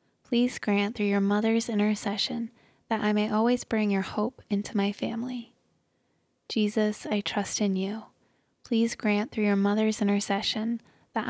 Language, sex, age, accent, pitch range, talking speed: English, female, 20-39, American, 205-225 Hz, 150 wpm